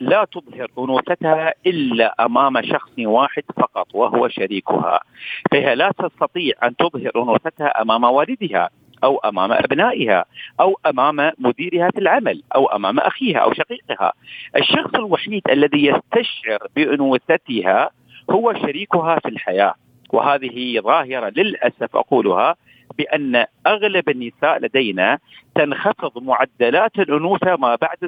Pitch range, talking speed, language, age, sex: 130-190 Hz, 115 wpm, Arabic, 50-69, male